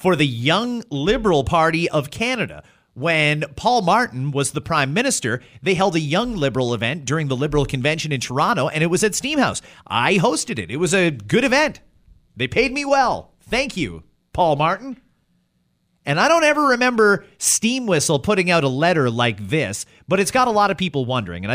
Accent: American